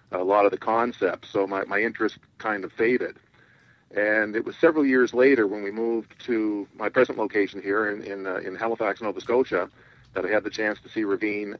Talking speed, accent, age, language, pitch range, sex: 210 wpm, American, 50-69, English, 100-115 Hz, male